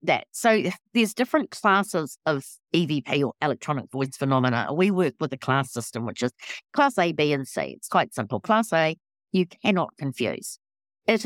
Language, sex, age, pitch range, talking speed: English, female, 50-69, 135-190 Hz, 175 wpm